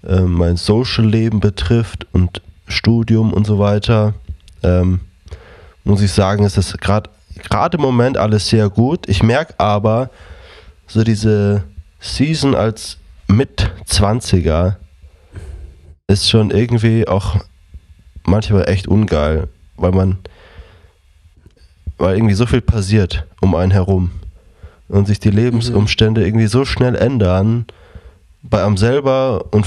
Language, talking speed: German, 120 wpm